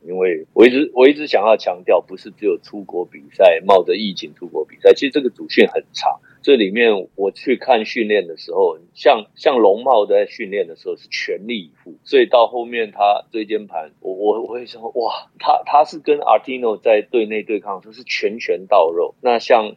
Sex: male